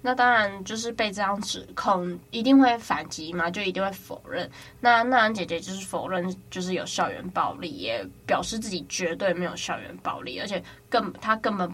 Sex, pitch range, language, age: female, 175-215 Hz, Chinese, 10-29